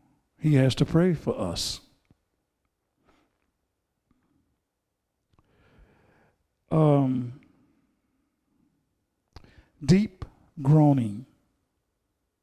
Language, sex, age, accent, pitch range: English, male, 60-79, American, 135-165 Hz